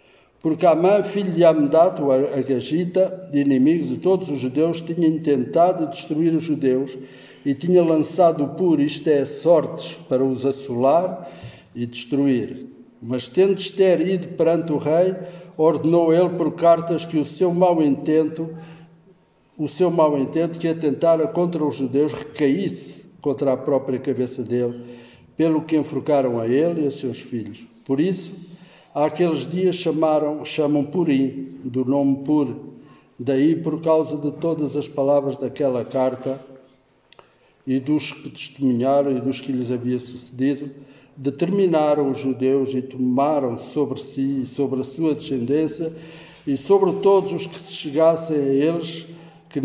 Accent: Brazilian